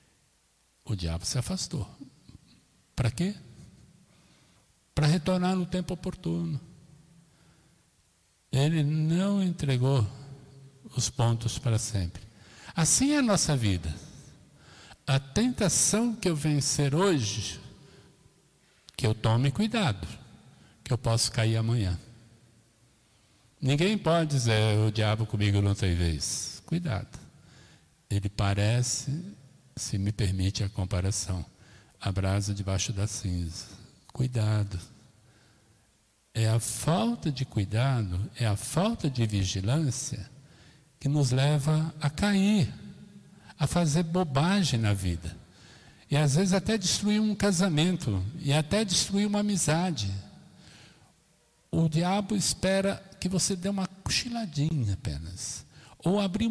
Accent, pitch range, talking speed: Brazilian, 110-170 Hz, 110 wpm